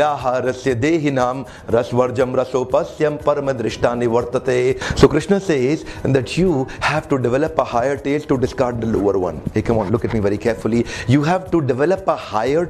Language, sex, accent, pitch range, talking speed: Hindi, male, native, 135-180 Hz, 185 wpm